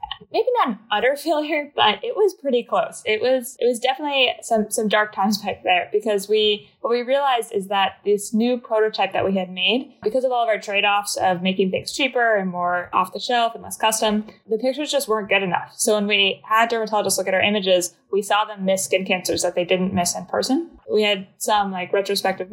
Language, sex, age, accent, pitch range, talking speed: English, female, 10-29, American, 185-225 Hz, 230 wpm